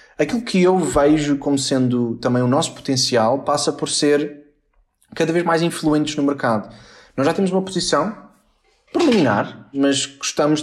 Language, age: Portuguese, 20-39